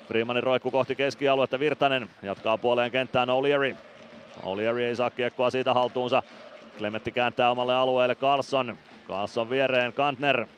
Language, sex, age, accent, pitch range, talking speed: Finnish, male, 30-49, native, 115-130 Hz, 130 wpm